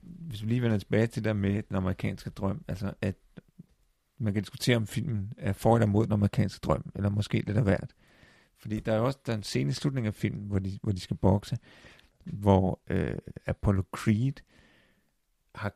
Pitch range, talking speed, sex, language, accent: 100-125 Hz, 200 wpm, male, Danish, native